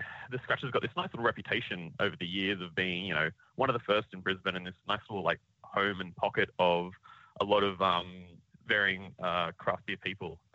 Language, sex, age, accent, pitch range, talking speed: English, male, 30-49, Australian, 90-130 Hz, 220 wpm